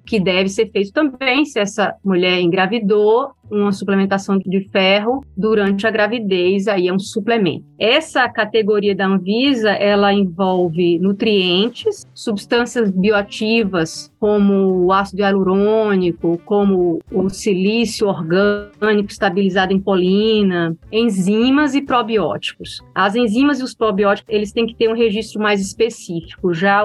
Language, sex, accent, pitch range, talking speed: Portuguese, female, Brazilian, 190-225 Hz, 125 wpm